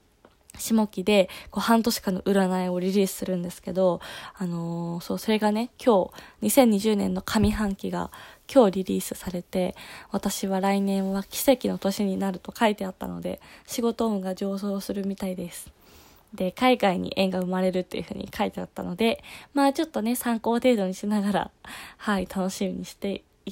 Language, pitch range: Japanese, 185-235 Hz